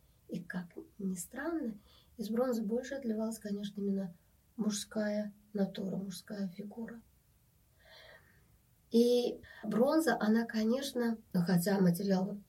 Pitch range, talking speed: 205-235 Hz, 95 wpm